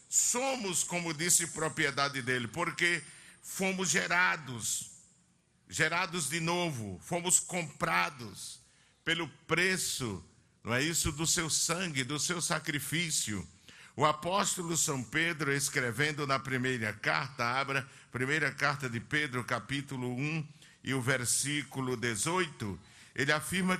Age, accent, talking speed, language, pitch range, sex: 60-79, Brazilian, 115 wpm, Portuguese, 140-170 Hz, male